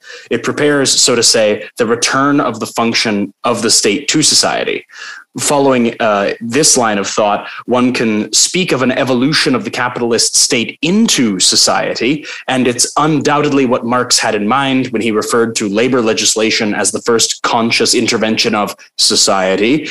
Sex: male